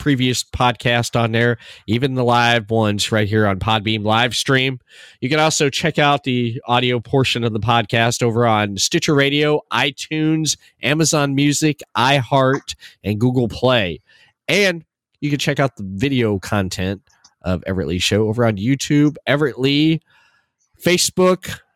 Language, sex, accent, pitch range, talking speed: English, male, American, 110-145 Hz, 150 wpm